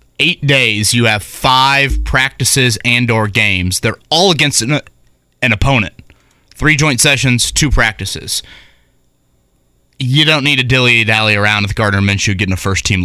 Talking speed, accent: 145 wpm, American